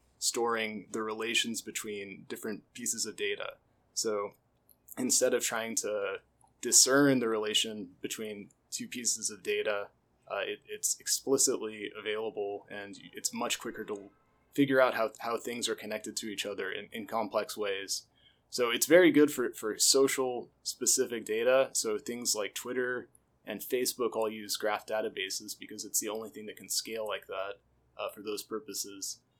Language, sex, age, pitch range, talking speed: English, male, 20-39, 105-145 Hz, 155 wpm